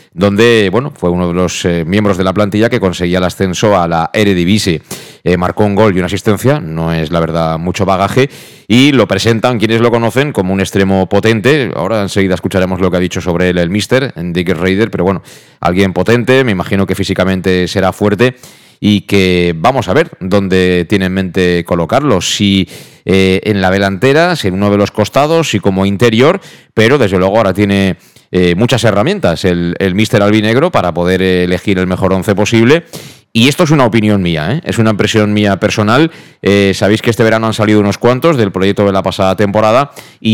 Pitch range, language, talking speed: 95-110 Hz, Spanish, 200 wpm